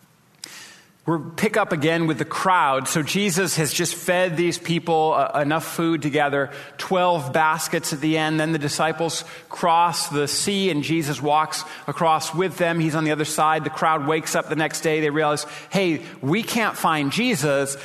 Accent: American